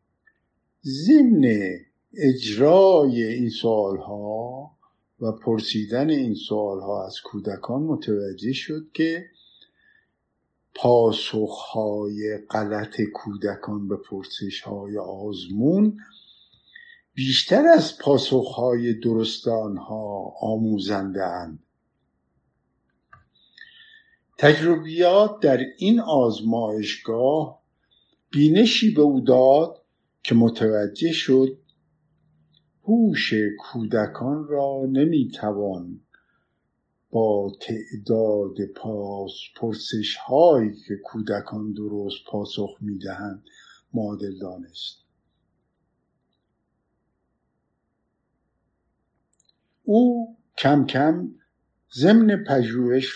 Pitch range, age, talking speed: 105-155 Hz, 50-69, 70 wpm